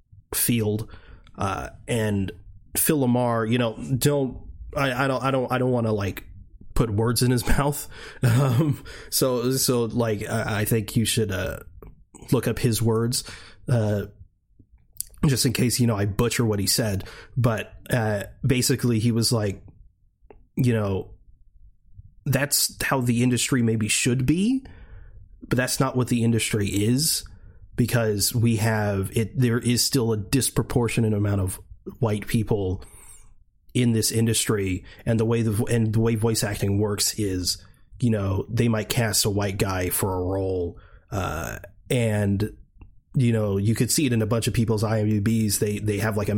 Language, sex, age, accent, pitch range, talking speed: English, male, 30-49, American, 100-120 Hz, 165 wpm